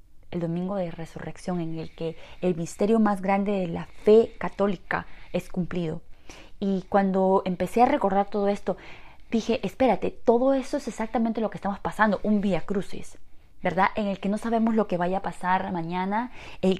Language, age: Spanish, 20-39